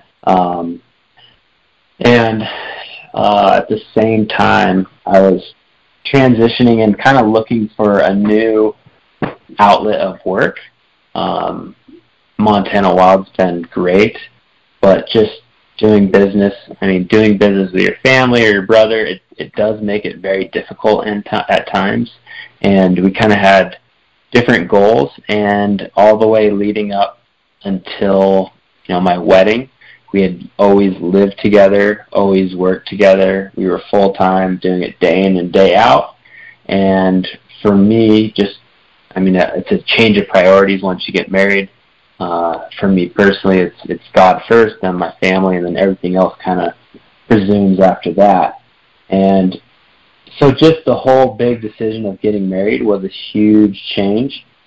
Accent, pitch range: American, 95-105 Hz